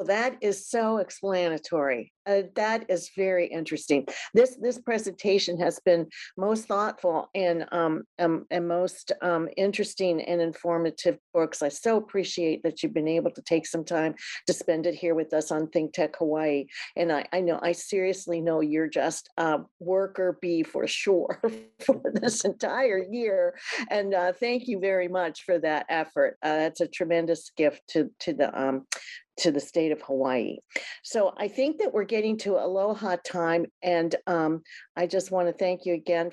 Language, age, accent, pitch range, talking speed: English, 50-69, American, 165-195 Hz, 175 wpm